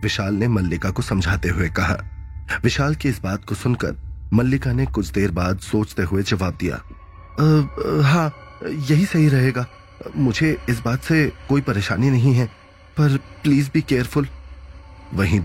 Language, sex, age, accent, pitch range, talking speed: Hindi, male, 30-49, native, 90-115 Hz, 160 wpm